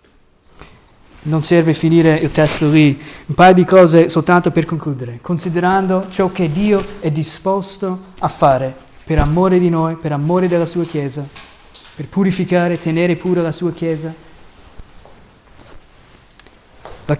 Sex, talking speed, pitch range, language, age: male, 135 wpm, 150-185 Hz, Italian, 20-39